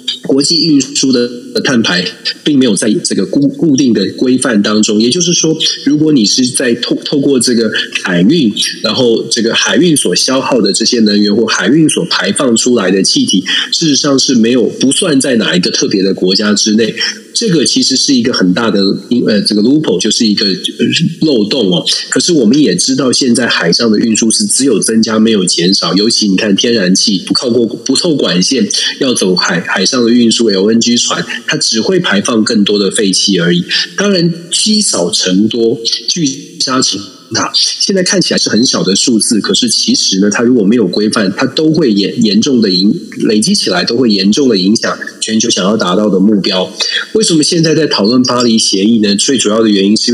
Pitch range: 105-150 Hz